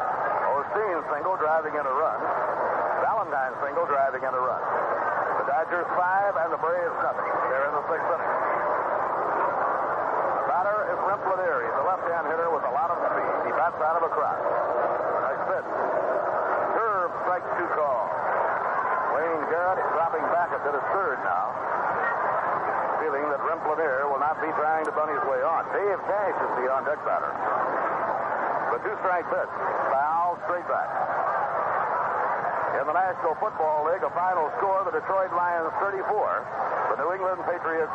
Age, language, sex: 60-79, English, male